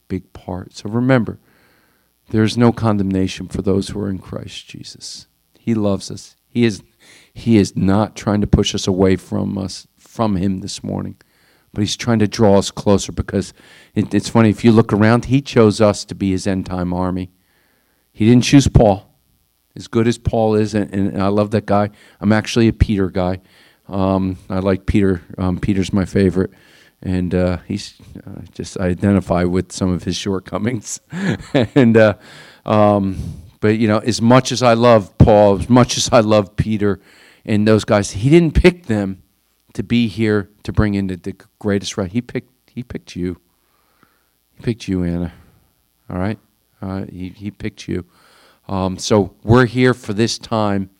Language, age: English, 50-69